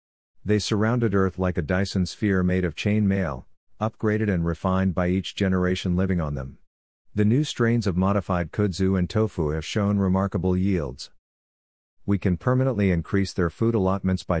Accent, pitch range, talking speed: American, 90-105 Hz, 165 wpm